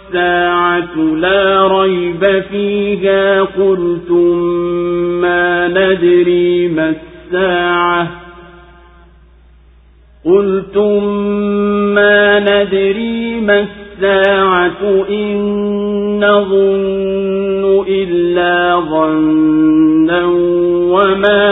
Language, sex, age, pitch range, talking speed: Swahili, male, 50-69, 175-200 Hz, 55 wpm